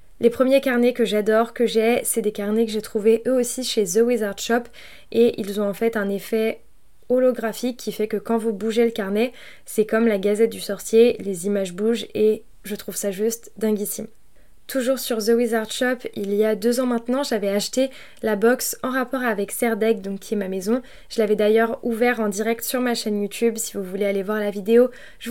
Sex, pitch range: female, 210-235 Hz